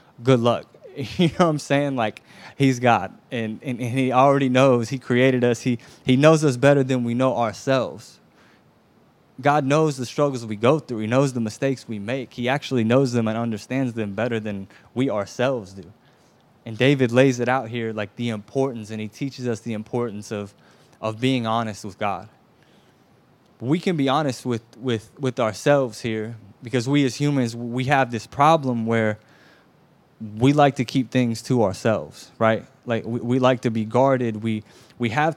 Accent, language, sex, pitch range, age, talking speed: American, English, male, 110-135 Hz, 20-39, 185 wpm